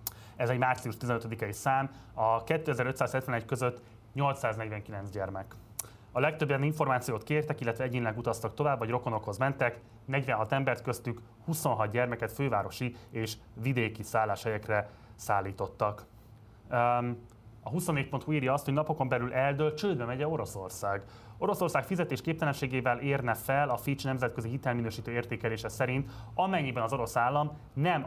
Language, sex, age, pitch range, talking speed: Hungarian, male, 30-49, 110-135 Hz, 125 wpm